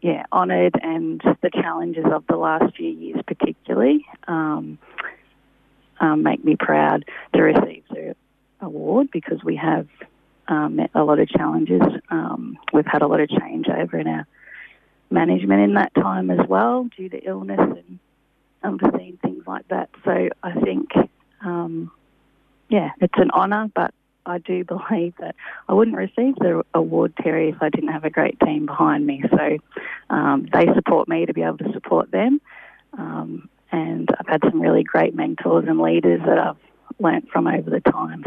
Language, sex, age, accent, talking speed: English, female, 30-49, Australian, 170 wpm